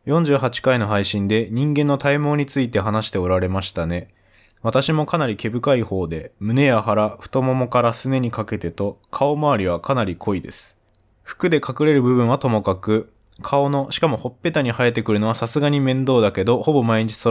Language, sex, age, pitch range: Japanese, male, 20-39, 100-135 Hz